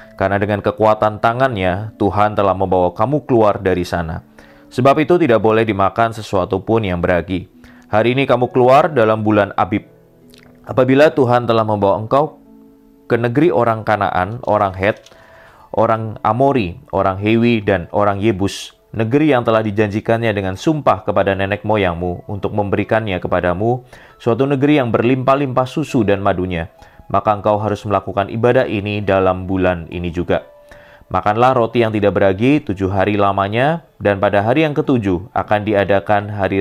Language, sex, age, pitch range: Indonesian, male, 20-39, 95-120 Hz